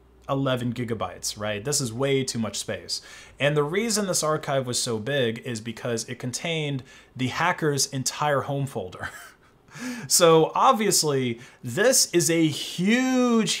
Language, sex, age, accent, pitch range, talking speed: English, male, 20-39, American, 115-145 Hz, 140 wpm